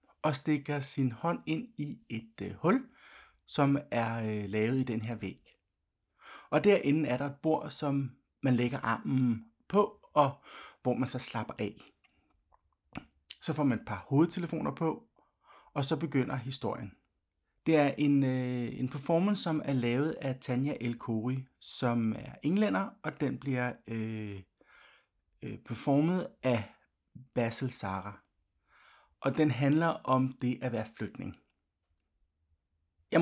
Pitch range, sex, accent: 110-150 Hz, male, native